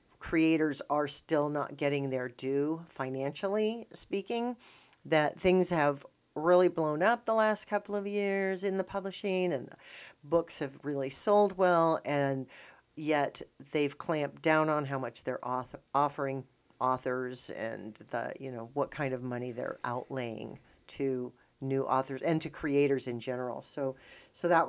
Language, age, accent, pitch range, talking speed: English, 40-59, American, 135-175 Hz, 150 wpm